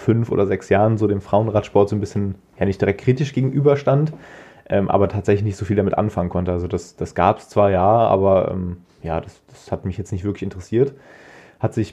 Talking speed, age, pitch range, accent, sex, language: 210 wpm, 20-39, 100-125 Hz, German, male, German